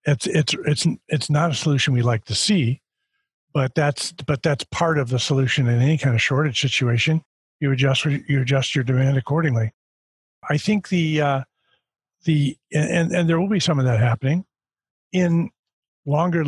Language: English